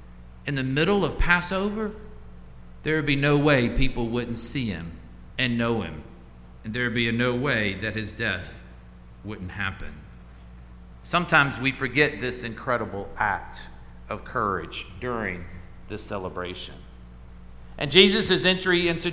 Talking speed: 135 wpm